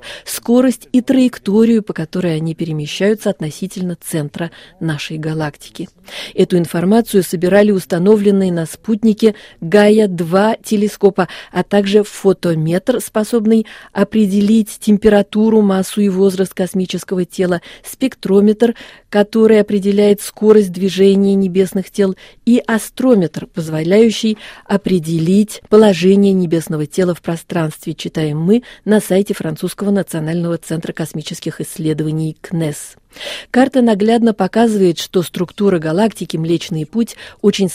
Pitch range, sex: 170-215 Hz, female